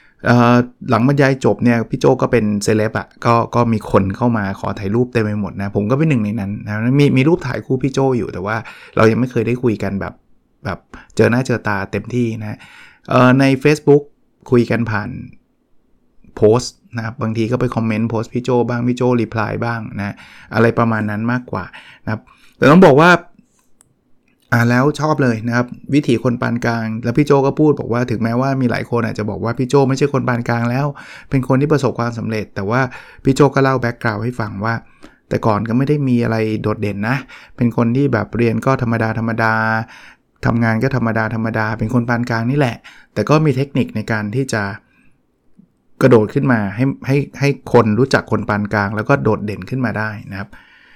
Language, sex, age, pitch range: English, male, 20-39, 110-130 Hz